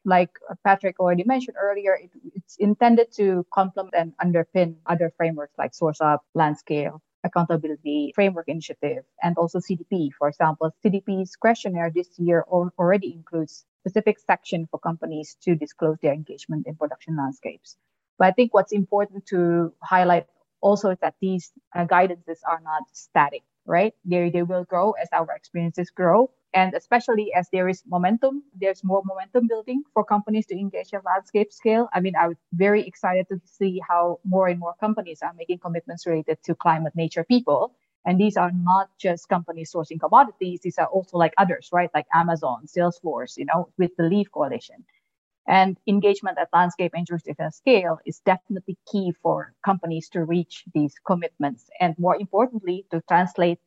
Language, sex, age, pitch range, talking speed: English, female, 20-39, 165-200 Hz, 170 wpm